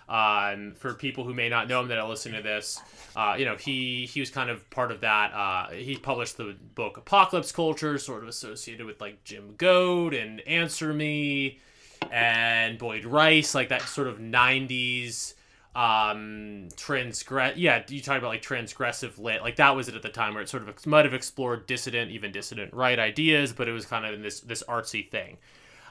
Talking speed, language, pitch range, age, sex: 205 wpm, English, 115-145 Hz, 20-39, male